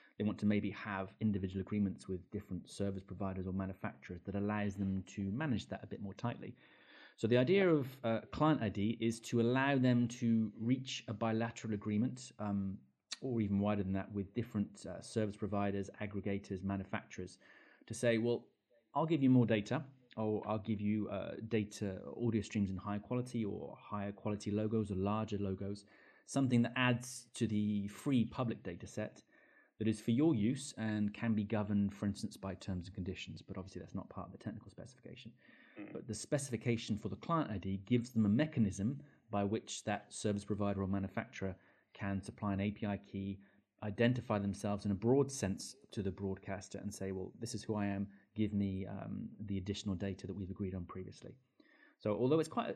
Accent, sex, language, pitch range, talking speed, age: British, male, English, 100-115 Hz, 190 wpm, 30-49